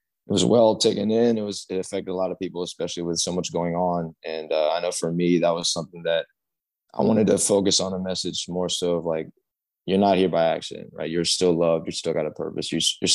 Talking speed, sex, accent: 255 wpm, male, American